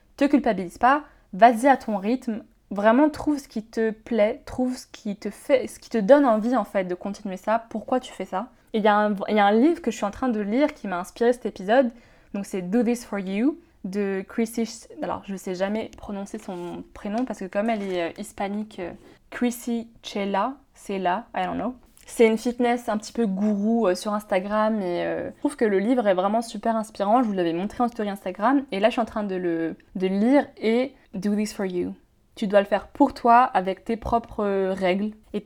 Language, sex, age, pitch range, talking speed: French, female, 20-39, 195-245 Hz, 225 wpm